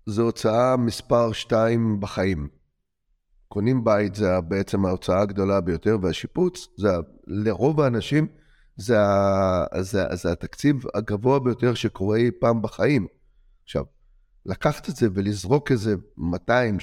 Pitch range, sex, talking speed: 105-135 Hz, male, 120 wpm